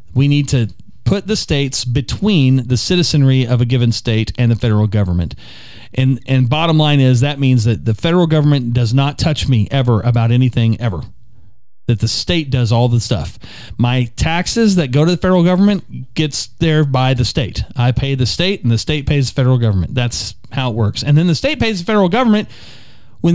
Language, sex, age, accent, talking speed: English, male, 40-59, American, 205 wpm